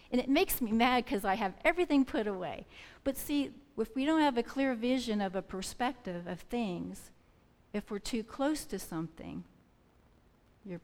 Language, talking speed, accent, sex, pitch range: English, 175 wpm, American, female, 180-235 Hz